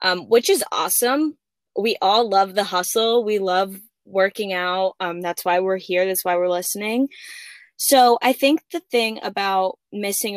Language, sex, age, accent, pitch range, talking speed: English, female, 20-39, American, 180-240 Hz, 170 wpm